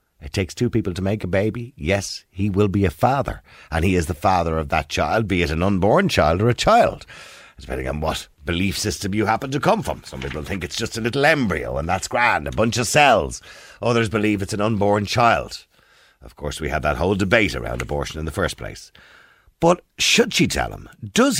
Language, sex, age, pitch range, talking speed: English, male, 50-69, 85-120 Hz, 225 wpm